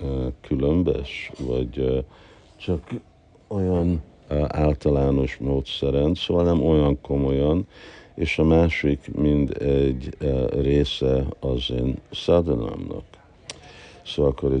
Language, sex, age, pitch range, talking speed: Hungarian, male, 60-79, 65-85 Hz, 95 wpm